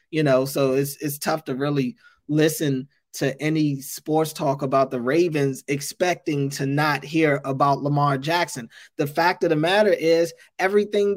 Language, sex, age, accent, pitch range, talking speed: English, male, 20-39, American, 155-195 Hz, 160 wpm